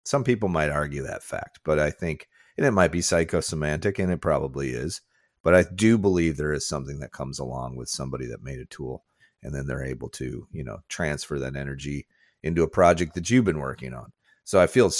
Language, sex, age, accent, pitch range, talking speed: English, male, 40-59, American, 70-80 Hz, 220 wpm